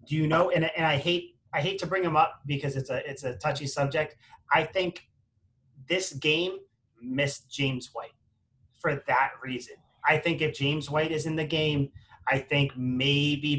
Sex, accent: male, American